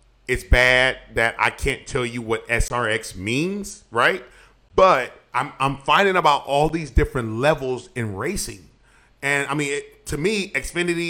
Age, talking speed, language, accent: 30-49, 155 wpm, English, American